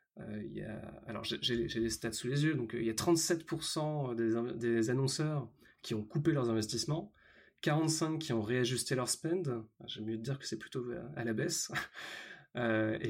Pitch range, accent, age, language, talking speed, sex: 115-150 Hz, French, 20-39, French, 175 wpm, male